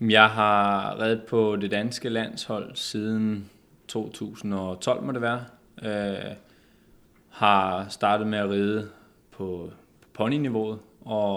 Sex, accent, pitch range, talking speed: male, native, 100-110 Hz, 110 wpm